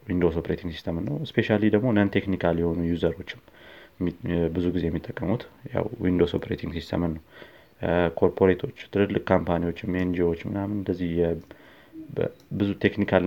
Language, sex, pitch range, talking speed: Amharic, male, 85-100 Hz, 100 wpm